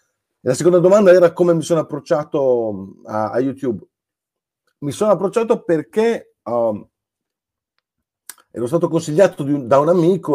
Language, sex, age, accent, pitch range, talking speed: Italian, male, 50-69, native, 125-180 Hz, 135 wpm